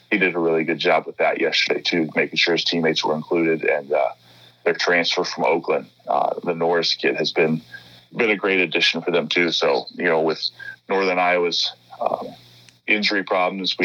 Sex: male